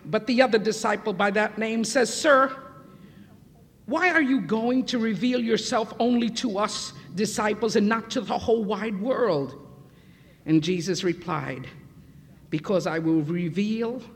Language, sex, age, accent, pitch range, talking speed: English, female, 50-69, American, 175-245 Hz, 145 wpm